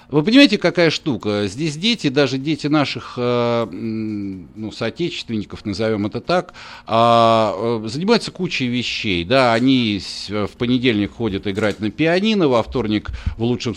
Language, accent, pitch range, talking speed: Russian, native, 105-145 Hz, 125 wpm